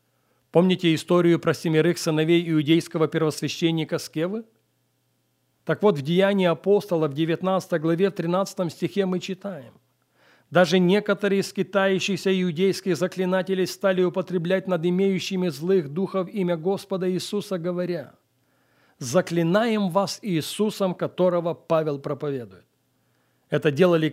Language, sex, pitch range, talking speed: Russian, male, 155-205 Hz, 110 wpm